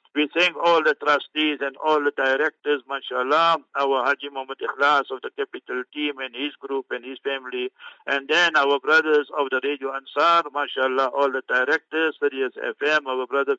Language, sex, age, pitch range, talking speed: English, male, 60-79, 130-150 Hz, 175 wpm